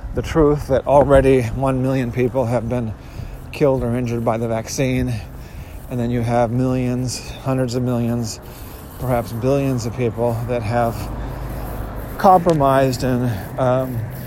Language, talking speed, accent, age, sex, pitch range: English, 135 wpm, American, 40-59, male, 115-145 Hz